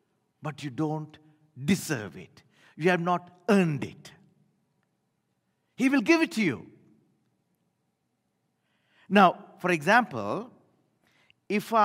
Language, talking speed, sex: English, 100 wpm, male